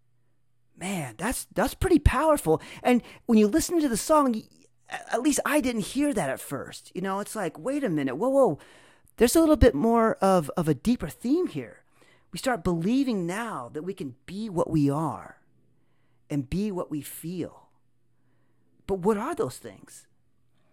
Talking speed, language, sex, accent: 175 wpm, English, male, American